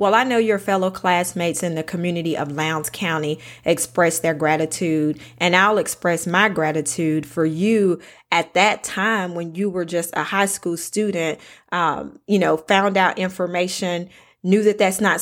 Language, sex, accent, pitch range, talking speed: English, female, American, 165-190 Hz, 170 wpm